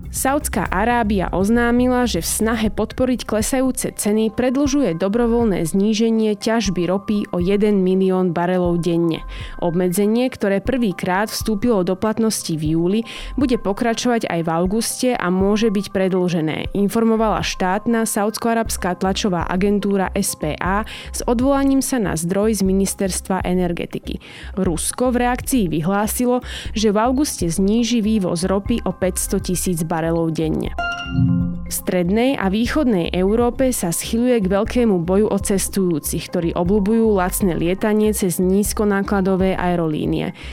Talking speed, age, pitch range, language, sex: 125 wpm, 20-39, 180-230 Hz, Slovak, female